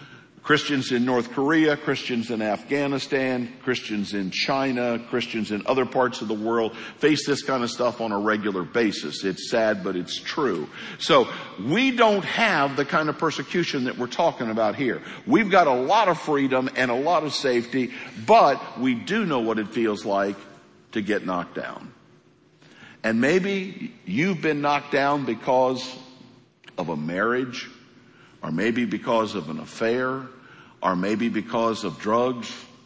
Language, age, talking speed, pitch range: English, 60-79, 160 wpm, 120-155 Hz